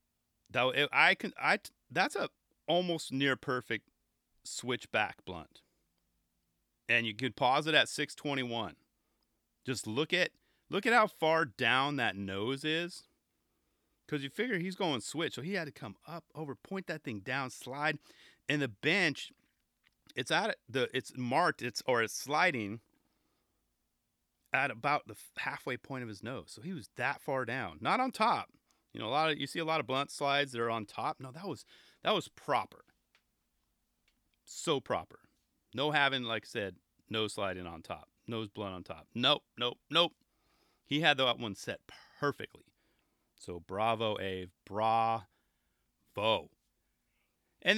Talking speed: 160 wpm